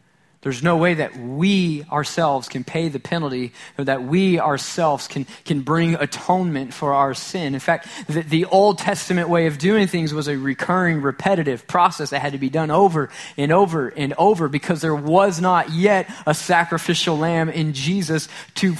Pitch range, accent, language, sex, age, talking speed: 130-180 Hz, American, English, male, 20-39, 180 wpm